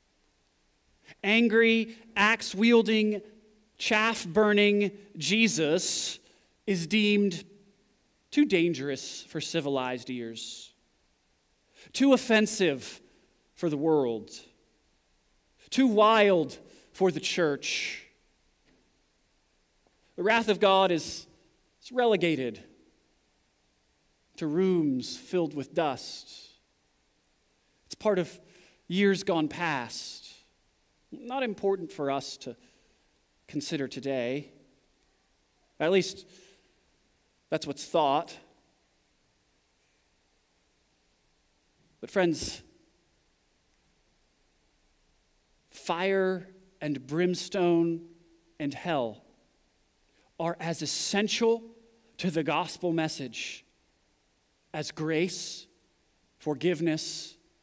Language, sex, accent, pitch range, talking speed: English, male, American, 135-200 Hz, 70 wpm